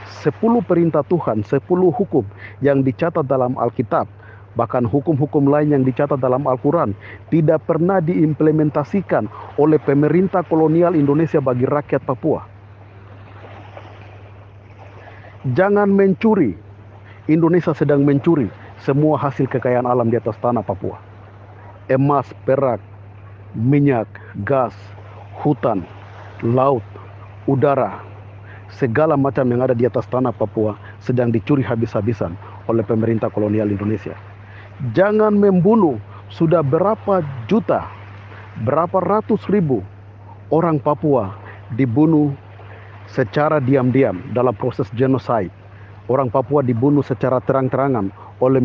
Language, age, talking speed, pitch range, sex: Malay, 50-69, 100 wpm, 105-145 Hz, male